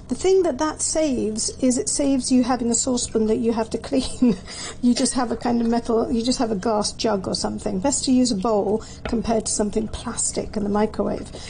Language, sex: English, female